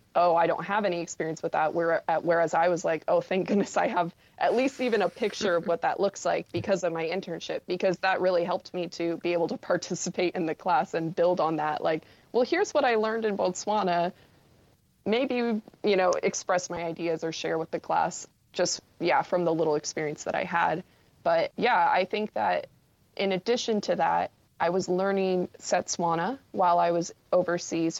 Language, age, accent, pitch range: English, 20-39, American, 165-190 Hz